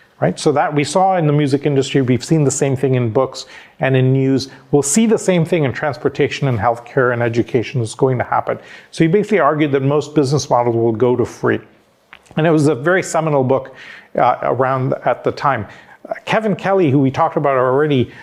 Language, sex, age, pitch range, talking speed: English, male, 40-59, 130-160 Hz, 215 wpm